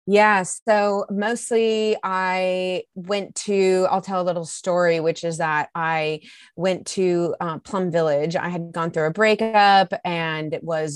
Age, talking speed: 30-49, 160 wpm